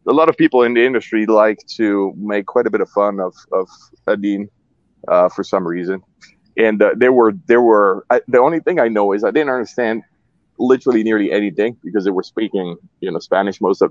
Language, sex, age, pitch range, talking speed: English, male, 20-39, 95-120 Hz, 215 wpm